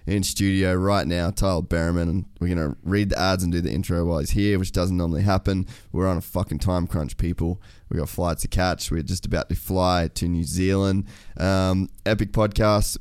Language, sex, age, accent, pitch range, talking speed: English, male, 20-39, Australian, 85-95 Hz, 215 wpm